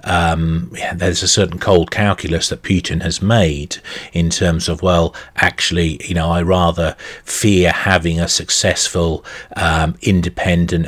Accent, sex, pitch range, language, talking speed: British, male, 85-95 Hz, English, 140 wpm